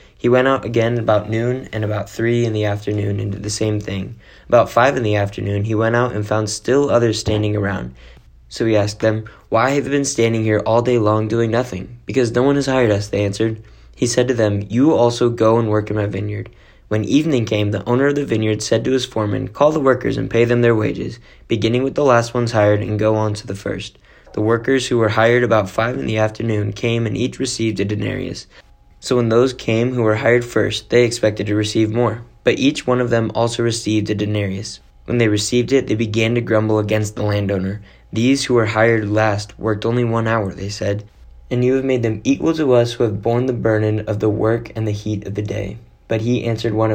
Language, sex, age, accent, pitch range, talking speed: English, male, 20-39, American, 105-120 Hz, 235 wpm